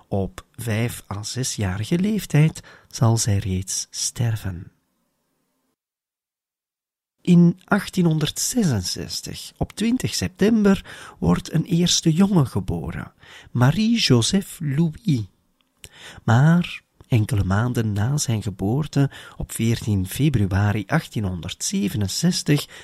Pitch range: 105-170 Hz